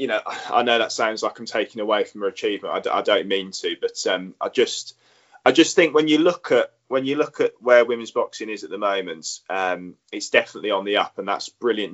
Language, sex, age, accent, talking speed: English, male, 20-39, British, 250 wpm